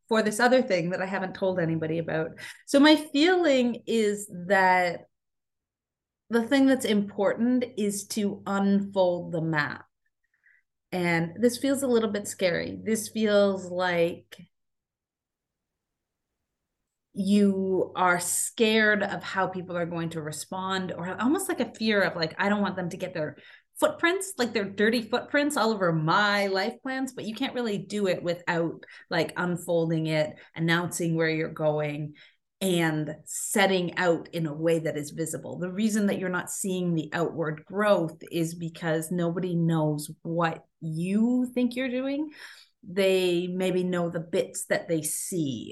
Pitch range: 165-210 Hz